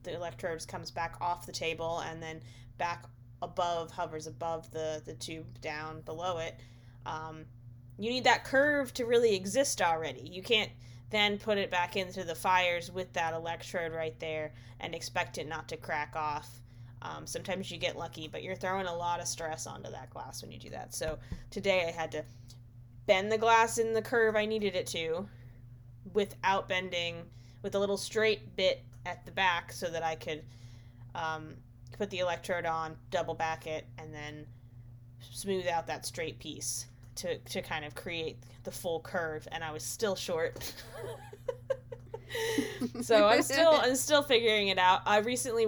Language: English